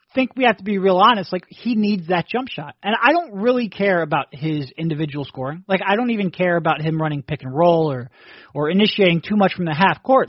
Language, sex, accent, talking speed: English, male, American, 245 wpm